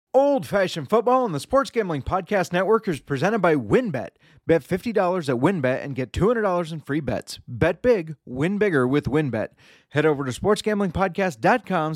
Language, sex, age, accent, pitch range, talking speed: English, male, 30-49, American, 145-195 Hz, 165 wpm